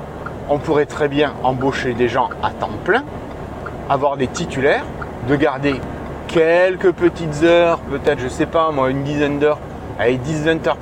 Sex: male